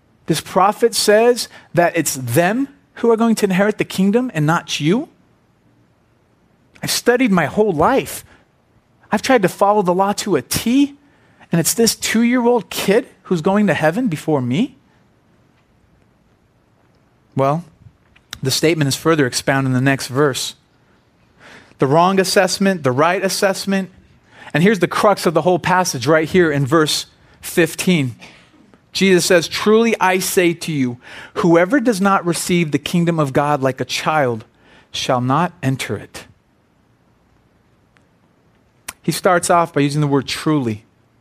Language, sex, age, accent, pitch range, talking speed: English, male, 30-49, American, 145-200 Hz, 150 wpm